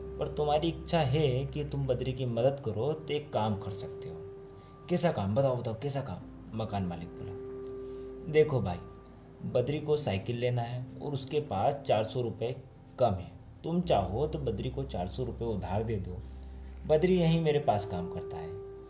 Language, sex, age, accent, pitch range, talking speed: Hindi, male, 20-39, native, 95-130 Hz, 180 wpm